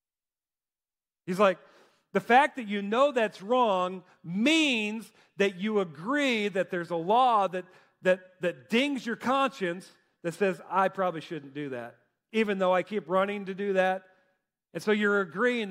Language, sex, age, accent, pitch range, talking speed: English, male, 40-59, American, 175-215 Hz, 160 wpm